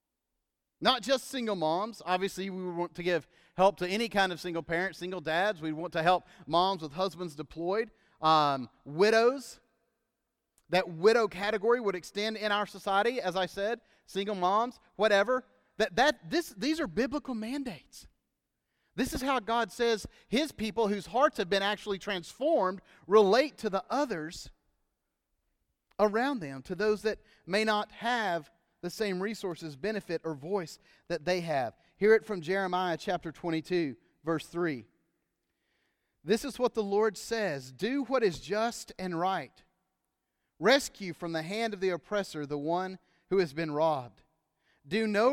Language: English